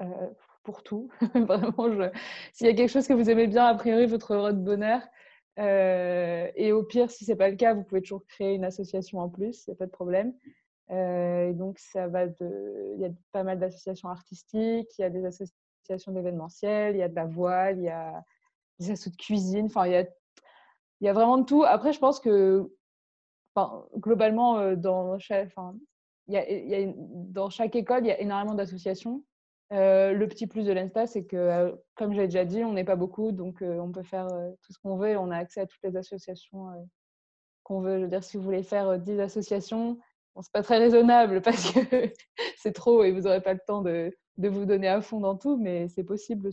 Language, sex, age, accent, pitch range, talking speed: French, female, 20-39, French, 185-220 Hz, 220 wpm